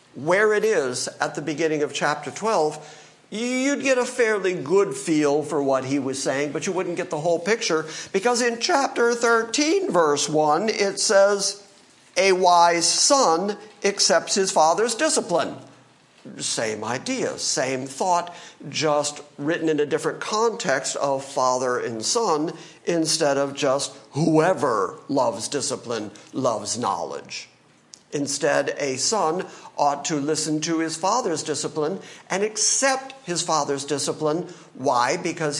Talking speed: 135 wpm